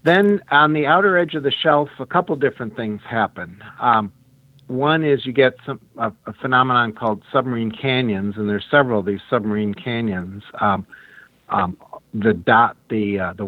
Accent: American